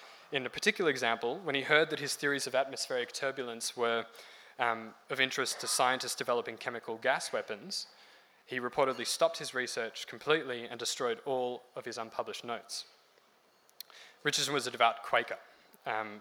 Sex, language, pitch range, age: male, English, 115-140 Hz, 10-29